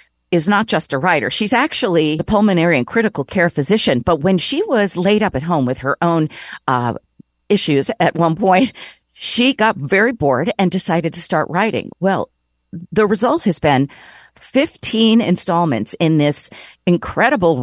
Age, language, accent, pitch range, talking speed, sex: 40-59, English, American, 150-215 Hz, 165 wpm, female